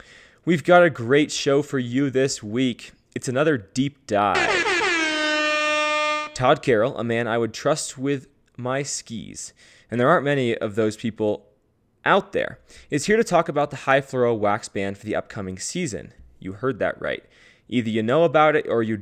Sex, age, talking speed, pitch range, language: male, 20-39, 180 wpm, 110-150 Hz, English